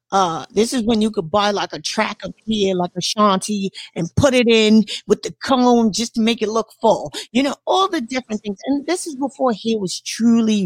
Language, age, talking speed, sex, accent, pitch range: English, 40-59, 230 wpm, female, American, 185-235 Hz